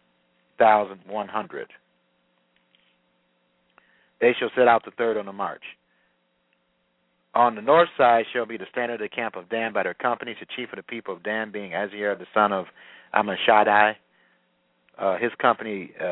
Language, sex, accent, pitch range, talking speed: English, male, American, 100-125 Hz, 165 wpm